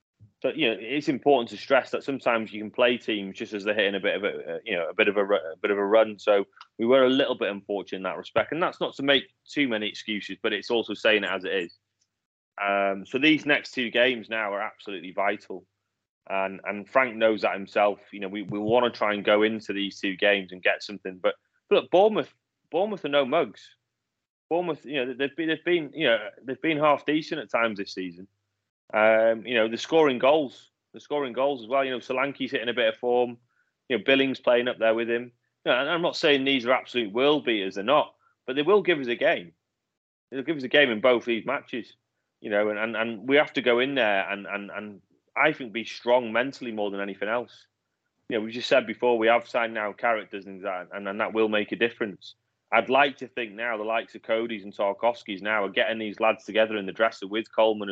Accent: British